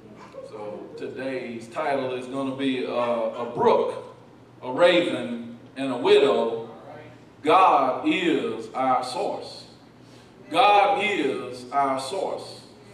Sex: male